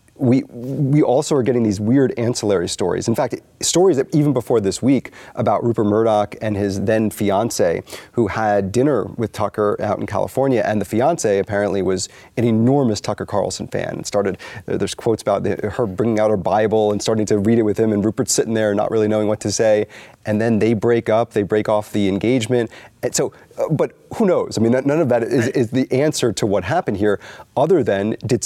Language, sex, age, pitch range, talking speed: English, male, 30-49, 100-120 Hz, 210 wpm